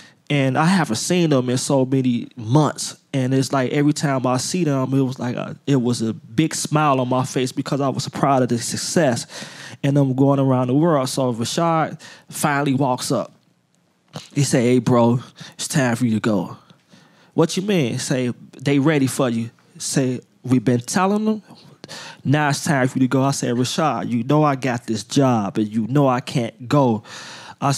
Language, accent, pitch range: English, American, 125-155 Hz